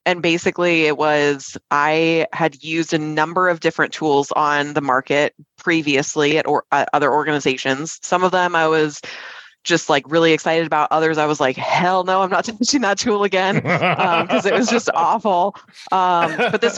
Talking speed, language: 185 wpm, English